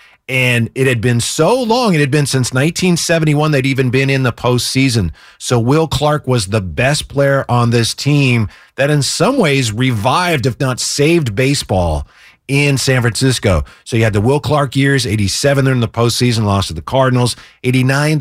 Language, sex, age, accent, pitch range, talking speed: English, male, 40-59, American, 120-150 Hz, 185 wpm